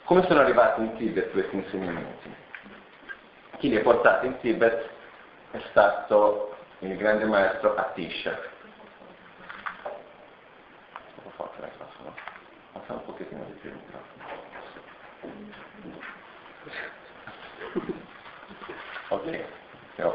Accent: native